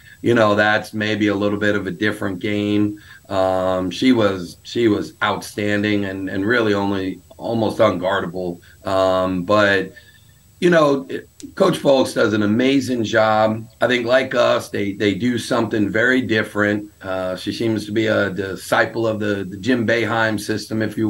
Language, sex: English, male